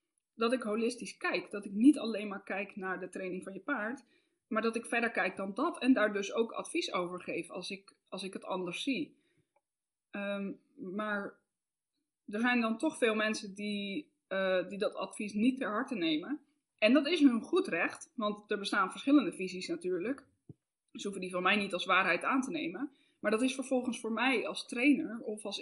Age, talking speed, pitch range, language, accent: 20-39, 195 wpm, 195-285 Hz, Dutch, Dutch